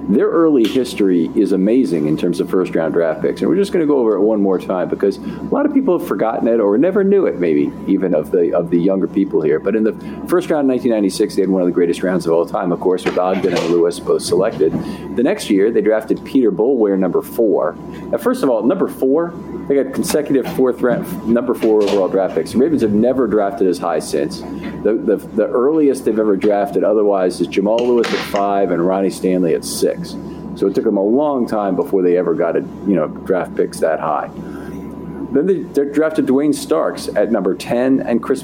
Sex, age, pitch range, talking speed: male, 50-69, 95-120 Hz, 235 wpm